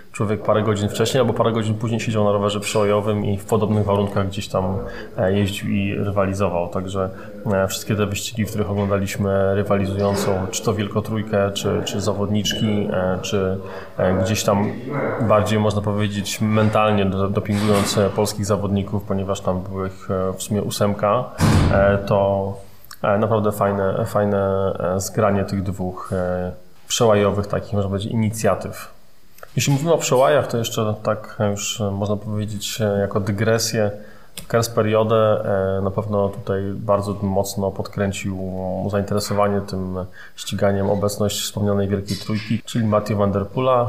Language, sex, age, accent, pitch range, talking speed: Polish, male, 20-39, native, 100-110 Hz, 130 wpm